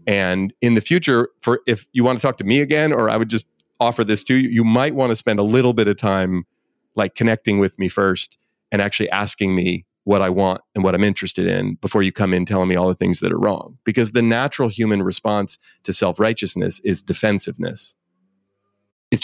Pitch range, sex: 95-120 Hz, male